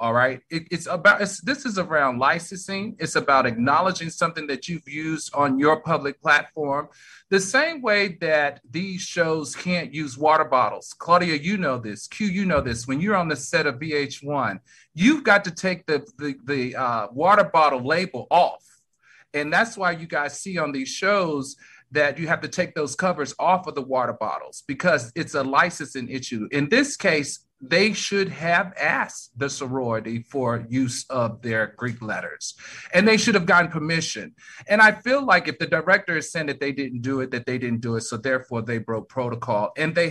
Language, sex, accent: English, male, American